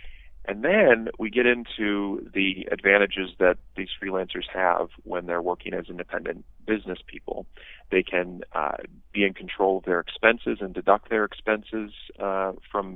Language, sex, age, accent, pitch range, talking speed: English, male, 30-49, American, 90-105 Hz, 155 wpm